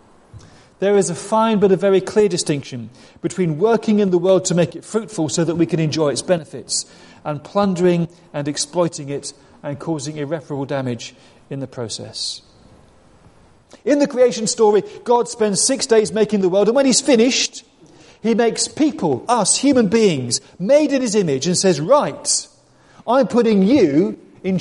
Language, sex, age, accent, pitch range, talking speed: English, male, 40-59, British, 155-230 Hz, 170 wpm